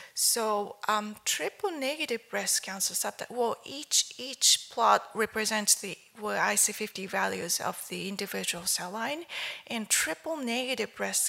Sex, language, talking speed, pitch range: female, English, 120 wpm, 200-235 Hz